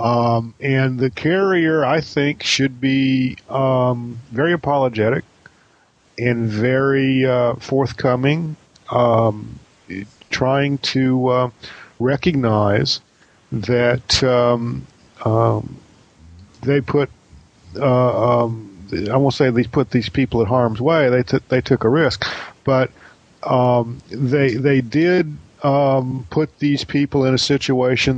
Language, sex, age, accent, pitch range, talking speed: English, male, 40-59, American, 115-135 Hz, 115 wpm